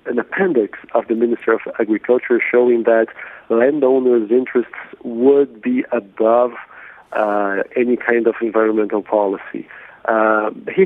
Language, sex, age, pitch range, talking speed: English, male, 40-59, 110-130 Hz, 120 wpm